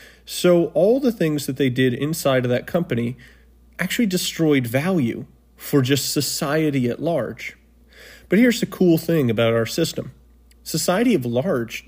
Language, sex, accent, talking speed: English, male, American, 150 wpm